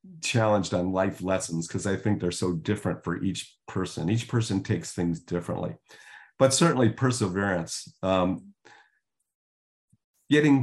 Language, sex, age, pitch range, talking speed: English, male, 40-59, 95-120 Hz, 130 wpm